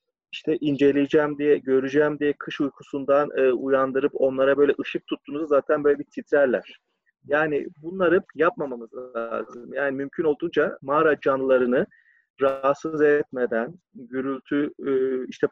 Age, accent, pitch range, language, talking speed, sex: 40-59, native, 135-180 Hz, Turkish, 120 wpm, male